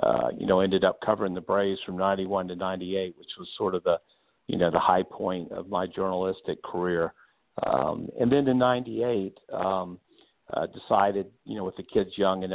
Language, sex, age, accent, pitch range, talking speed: English, male, 50-69, American, 90-100 Hz, 195 wpm